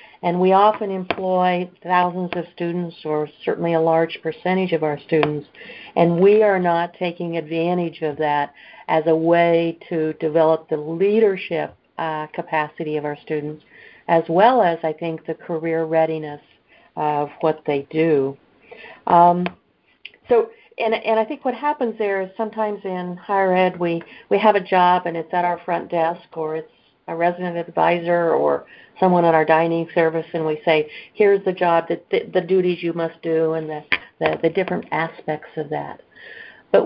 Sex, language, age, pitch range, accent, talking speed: female, English, 50-69, 160-180 Hz, American, 170 wpm